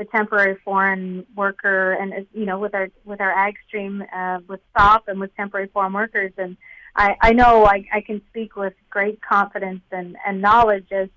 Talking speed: 195 wpm